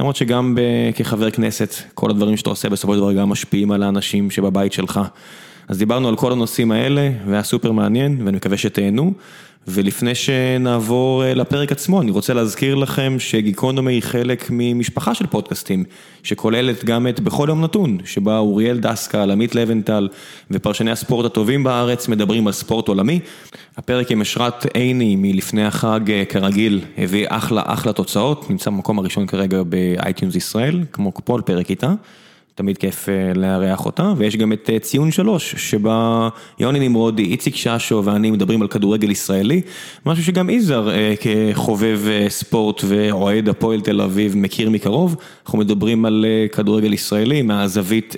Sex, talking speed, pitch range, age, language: male, 150 wpm, 105-130 Hz, 20-39, Hebrew